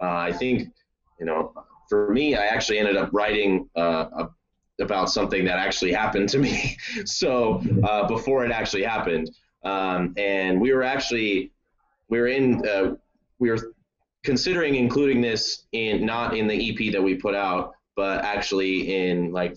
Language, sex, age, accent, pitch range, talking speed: English, male, 20-39, American, 90-110 Hz, 165 wpm